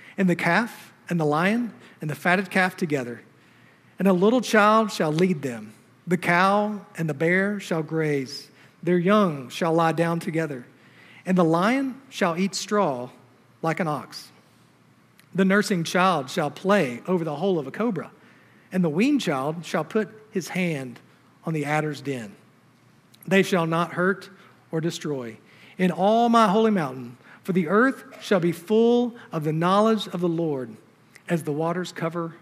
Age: 50-69